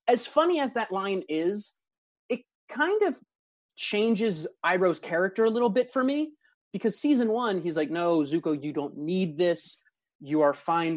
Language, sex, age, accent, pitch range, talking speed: English, male, 30-49, American, 150-205 Hz, 170 wpm